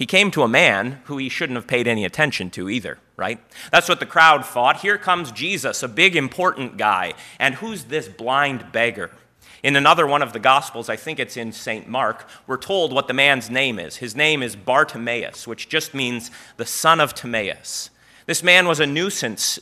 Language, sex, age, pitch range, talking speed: English, male, 30-49, 120-165 Hz, 205 wpm